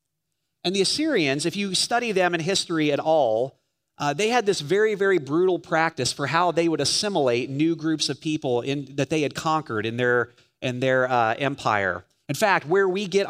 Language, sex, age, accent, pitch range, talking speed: English, male, 30-49, American, 145-180 Hz, 190 wpm